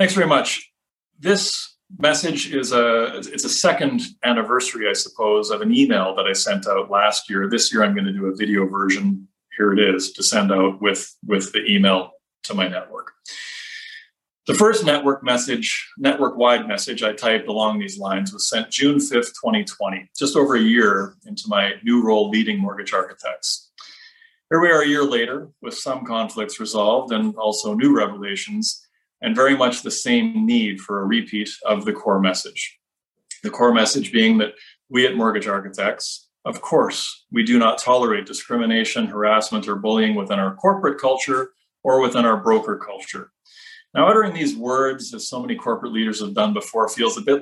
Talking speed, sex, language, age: 175 wpm, male, English, 30-49